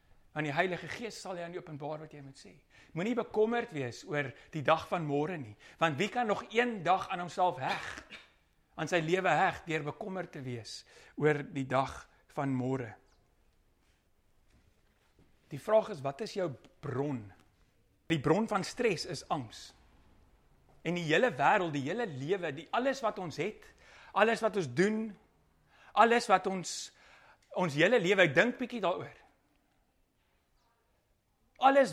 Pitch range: 125-190 Hz